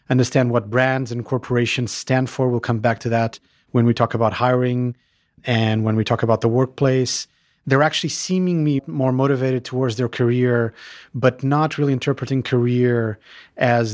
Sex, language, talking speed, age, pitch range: male, English, 165 wpm, 30-49, 115-130 Hz